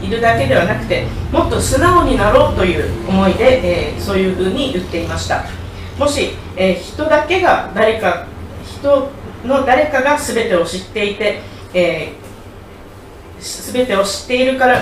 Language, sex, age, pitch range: Japanese, female, 40-59, 190-250 Hz